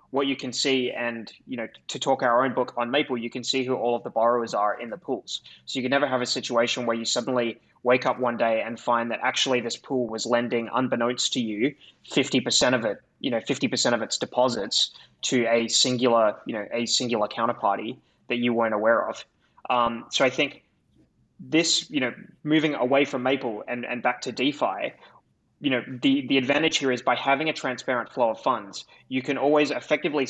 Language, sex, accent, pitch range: English, male, Australian, 120-135 Hz